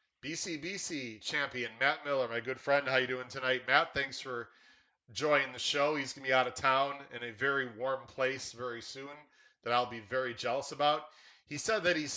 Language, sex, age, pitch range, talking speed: English, male, 30-49, 120-140 Hz, 210 wpm